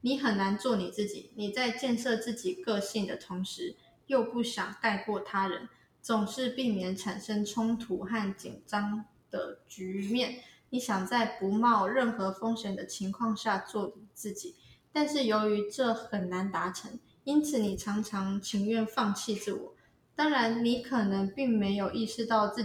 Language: Chinese